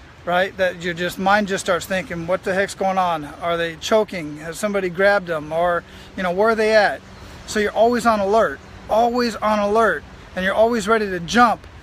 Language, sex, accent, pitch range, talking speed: English, male, American, 185-225 Hz, 210 wpm